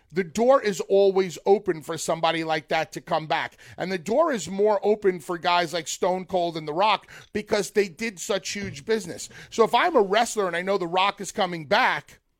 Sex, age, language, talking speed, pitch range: male, 30-49, English, 220 wpm, 175-220 Hz